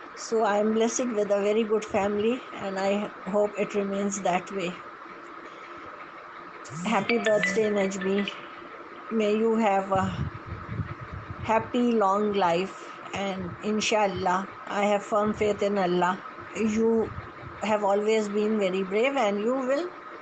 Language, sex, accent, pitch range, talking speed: English, female, Indian, 185-220 Hz, 130 wpm